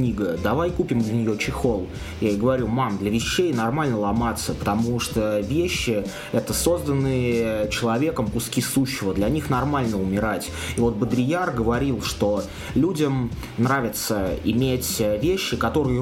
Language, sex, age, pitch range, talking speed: Russian, male, 20-39, 110-130 Hz, 130 wpm